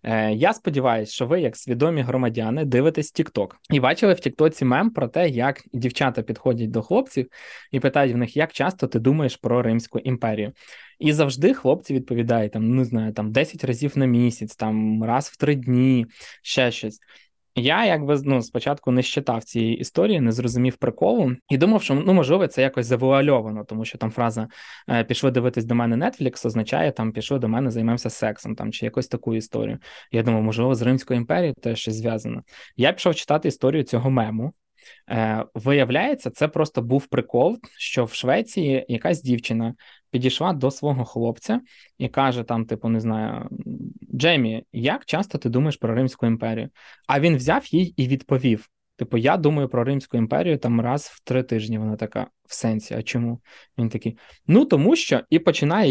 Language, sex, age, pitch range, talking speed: Ukrainian, male, 20-39, 115-140 Hz, 175 wpm